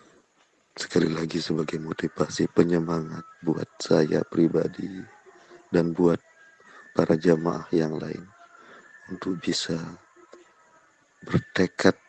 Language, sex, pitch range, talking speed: Indonesian, male, 85-95 Hz, 85 wpm